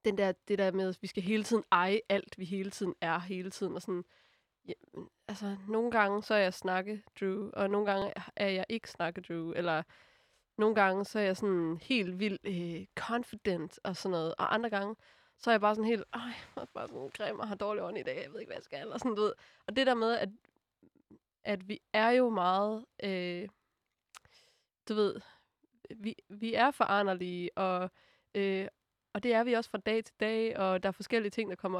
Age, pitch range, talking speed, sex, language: 20-39, 190-220 Hz, 215 wpm, female, Danish